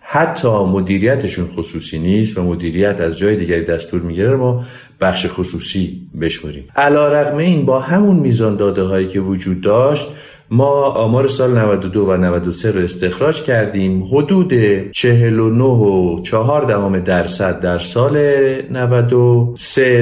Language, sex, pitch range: Persian, male, 95-135 Hz